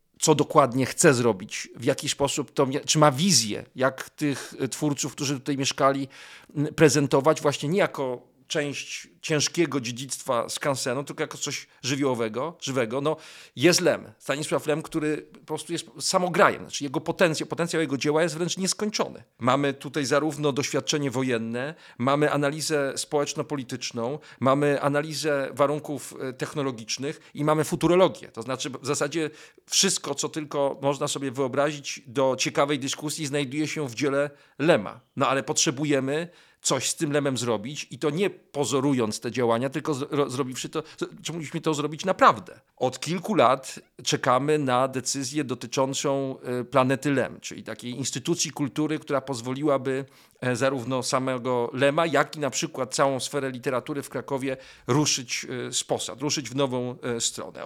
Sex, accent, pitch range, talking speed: male, native, 135-155 Hz, 145 wpm